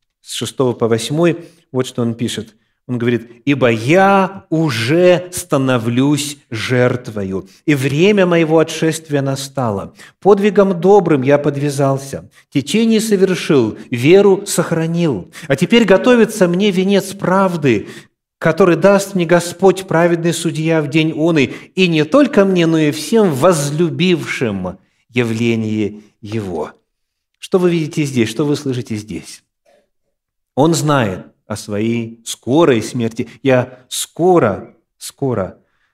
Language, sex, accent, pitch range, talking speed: Russian, male, native, 115-175 Hz, 115 wpm